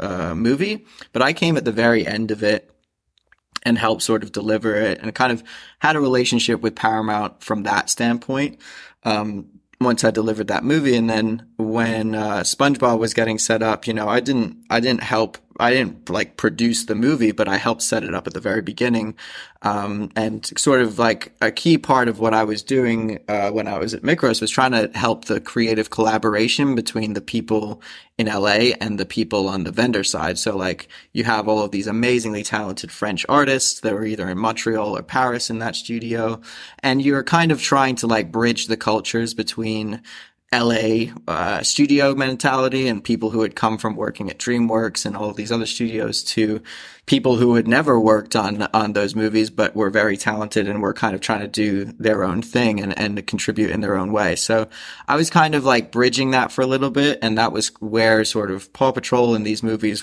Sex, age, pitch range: male, 20-39, 110-120 Hz